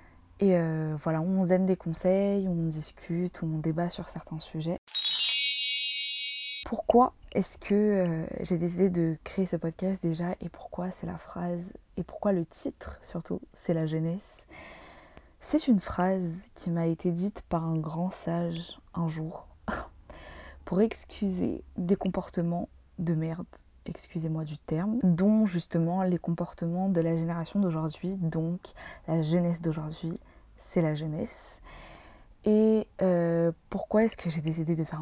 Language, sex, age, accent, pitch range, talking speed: French, female, 20-39, French, 160-190 Hz, 145 wpm